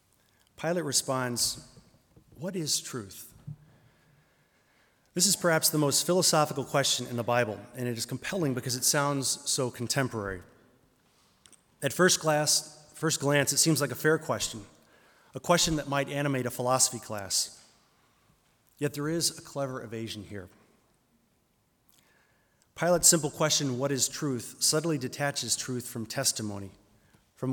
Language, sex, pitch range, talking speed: English, male, 115-150 Hz, 135 wpm